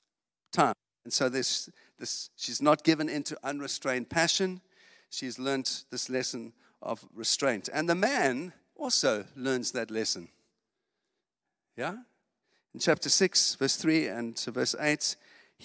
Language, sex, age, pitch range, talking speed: English, male, 50-69, 125-170 Hz, 125 wpm